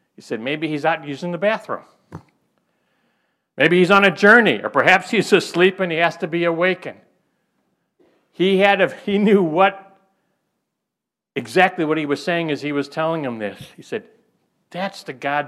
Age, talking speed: 60-79, 175 wpm